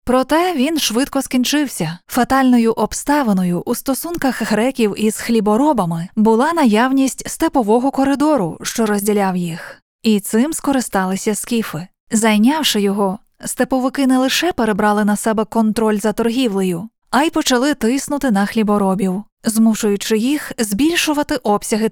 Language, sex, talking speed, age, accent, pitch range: Ukrainian, female, 120 wpm, 20-39, native, 210-265 Hz